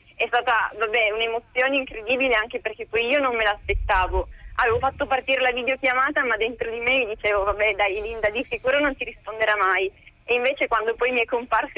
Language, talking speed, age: Italian, 195 wpm, 20-39